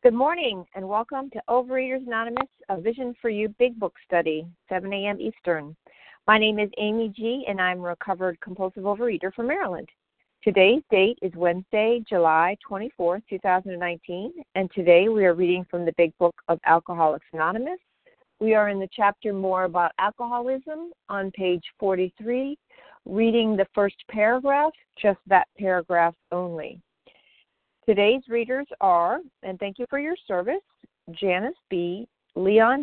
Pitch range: 185-235 Hz